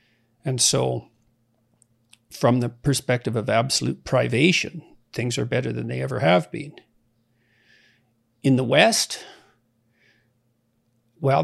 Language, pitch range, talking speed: English, 115-145 Hz, 105 wpm